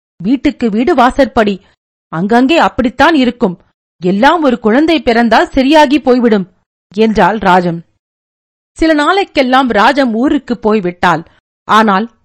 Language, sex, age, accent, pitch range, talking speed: Tamil, female, 50-69, native, 210-270 Hz, 100 wpm